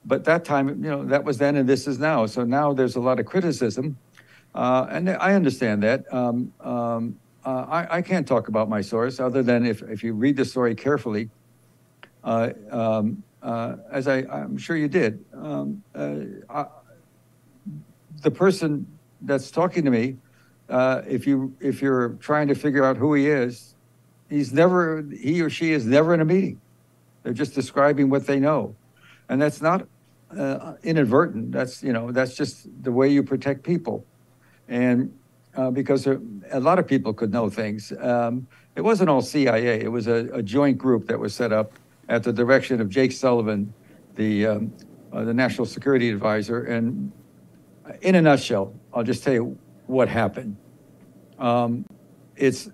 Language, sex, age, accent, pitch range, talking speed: English, male, 60-79, American, 115-140 Hz, 175 wpm